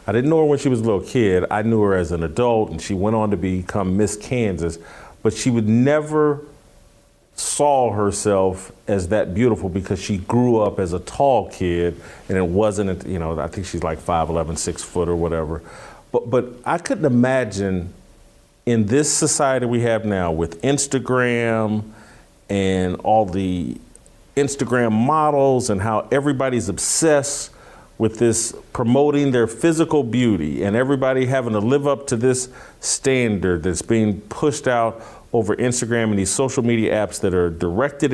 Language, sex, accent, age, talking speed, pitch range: English, male, American, 40-59, 170 wpm, 95-130 Hz